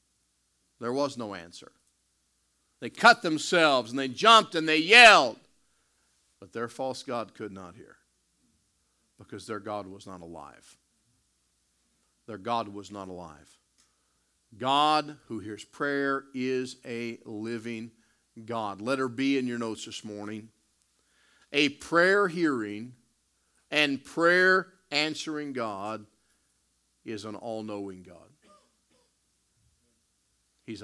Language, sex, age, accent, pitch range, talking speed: English, male, 50-69, American, 95-130 Hz, 115 wpm